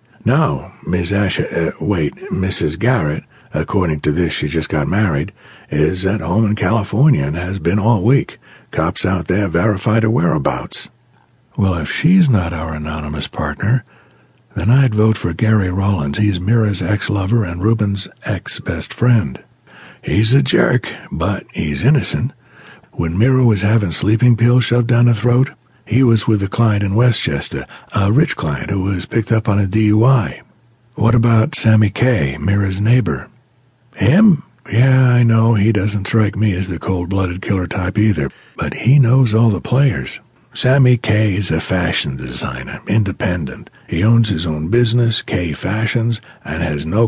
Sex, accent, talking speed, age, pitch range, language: male, American, 160 wpm, 60-79, 95-120 Hz, English